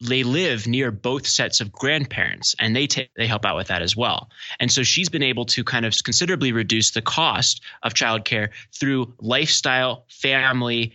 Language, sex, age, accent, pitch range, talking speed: English, male, 20-39, American, 110-135 Hz, 185 wpm